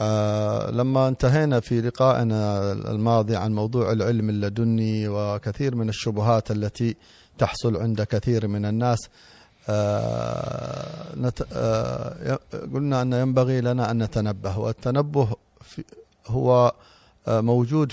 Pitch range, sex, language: 110-125 Hz, male, Arabic